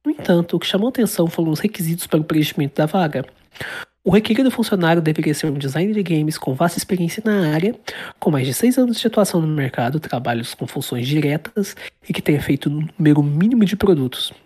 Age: 20-39